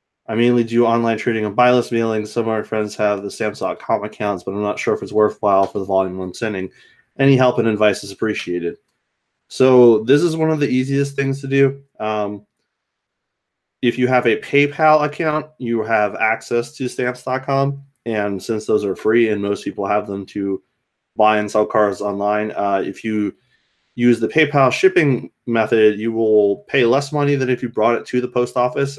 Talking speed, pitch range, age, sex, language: 195 wpm, 105-125 Hz, 20-39, male, English